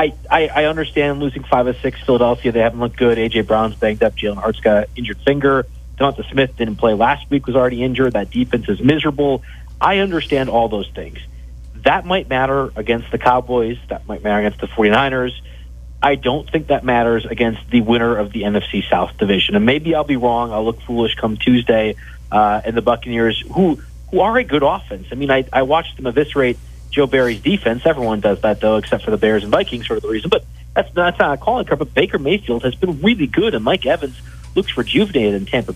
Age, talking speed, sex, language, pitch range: 30-49, 215 wpm, male, English, 105-135 Hz